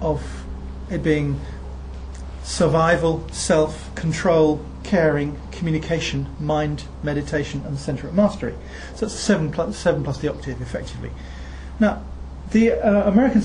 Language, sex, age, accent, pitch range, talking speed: English, male, 40-59, British, 145-195 Hz, 125 wpm